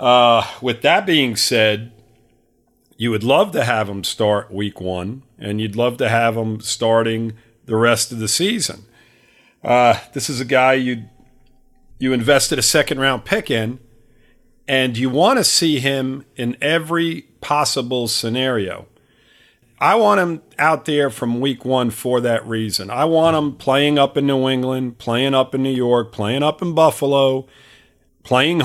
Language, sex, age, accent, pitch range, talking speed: English, male, 50-69, American, 115-140 Hz, 160 wpm